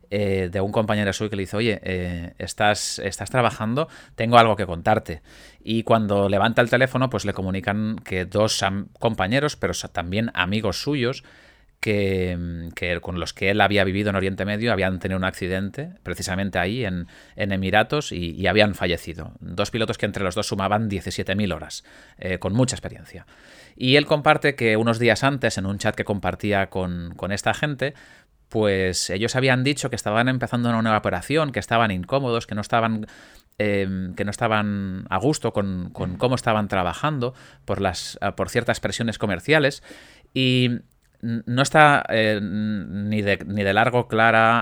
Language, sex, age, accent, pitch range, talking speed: Spanish, male, 30-49, Spanish, 95-120 Hz, 170 wpm